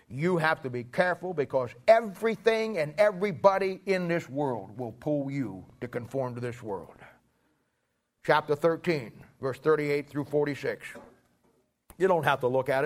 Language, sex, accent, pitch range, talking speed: English, male, American, 140-170 Hz, 150 wpm